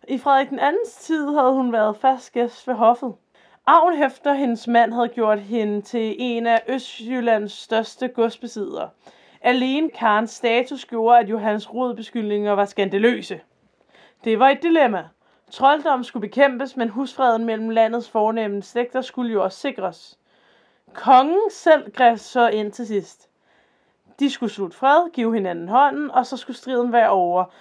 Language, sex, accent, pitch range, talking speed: Danish, female, native, 220-265 Hz, 150 wpm